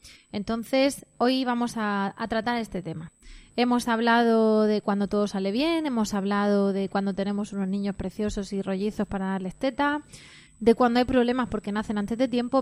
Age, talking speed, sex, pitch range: 20-39, 175 wpm, female, 195-245 Hz